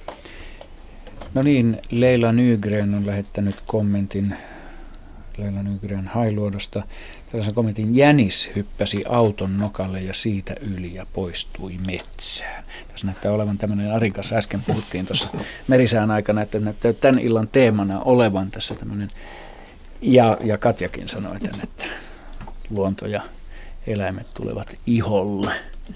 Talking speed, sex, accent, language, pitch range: 115 wpm, male, native, Finnish, 95-115 Hz